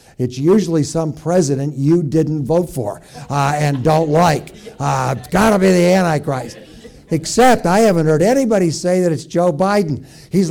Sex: male